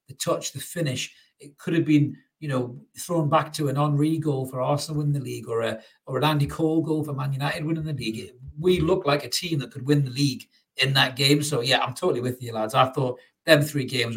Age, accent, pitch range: 40-59, British, 125-155 Hz